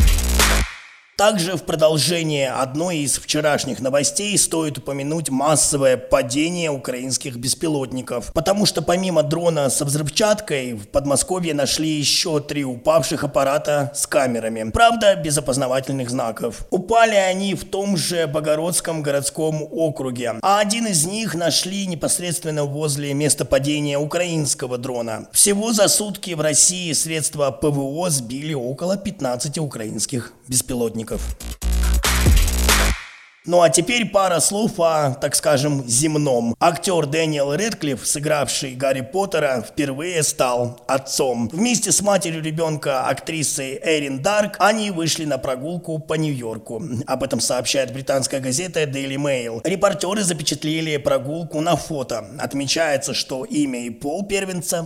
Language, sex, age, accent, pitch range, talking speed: Russian, male, 20-39, native, 130-170 Hz, 120 wpm